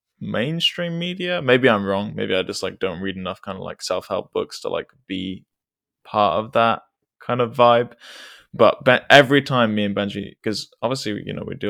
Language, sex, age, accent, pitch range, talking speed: English, male, 20-39, British, 100-120 Hz, 200 wpm